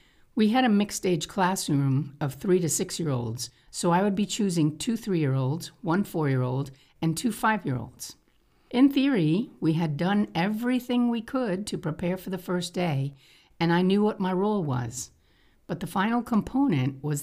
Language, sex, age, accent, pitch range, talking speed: English, female, 50-69, American, 145-190 Hz, 165 wpm